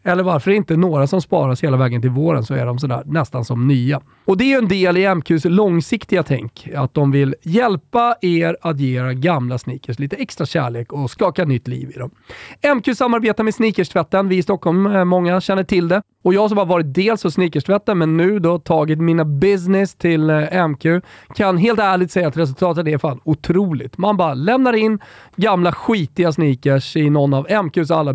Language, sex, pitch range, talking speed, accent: Swedish, male, 135-195 Hz, 200 wpm, native